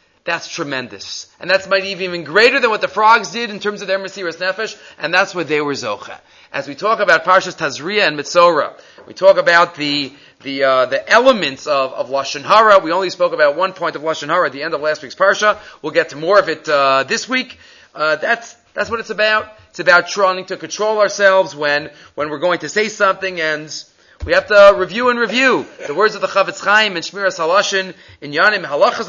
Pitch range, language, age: 160-210 Hz, English, 30-49